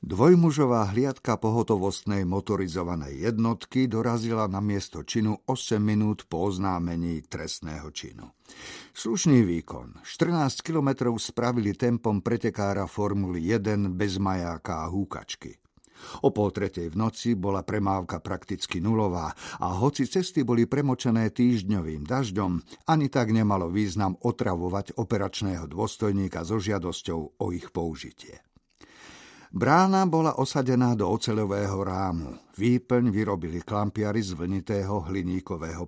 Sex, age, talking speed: male, 50-69, 115 wpm